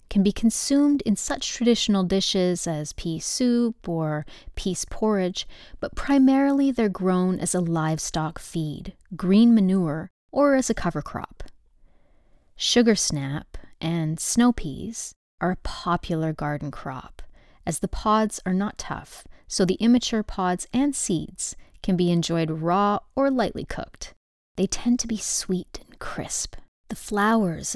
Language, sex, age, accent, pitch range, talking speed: English, female, 30-49, American, 165-230 Hz, 145 wpm